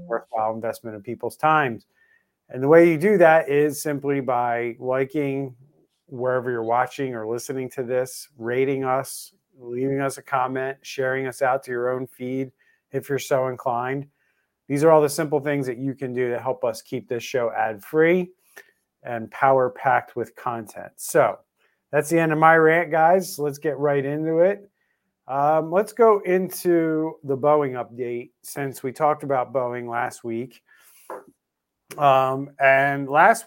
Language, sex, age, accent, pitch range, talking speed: English, male, 40-59, American, 125-150 Hz, 165 wpm